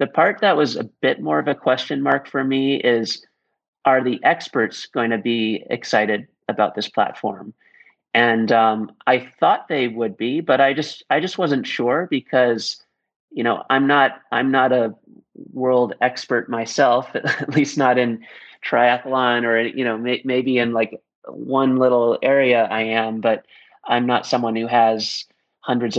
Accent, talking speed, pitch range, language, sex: American, 170 wpm, 115-135 Hz, English, male